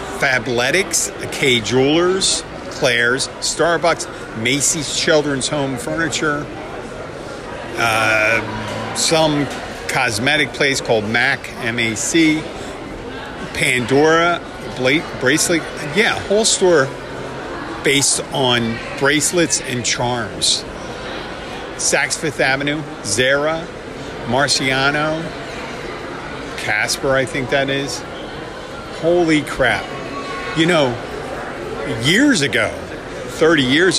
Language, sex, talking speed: English, male, 80 wpm